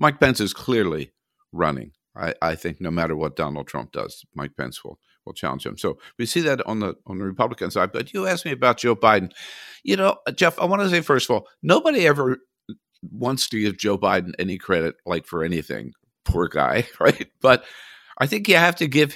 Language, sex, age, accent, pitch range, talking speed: English, male, 60-79, American, 95-120 Hz, 215 wpm